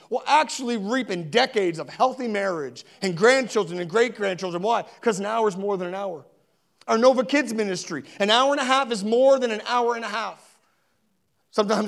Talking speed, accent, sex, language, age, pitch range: 195 wpm, American, male, English, 30-49, 180-250 Hz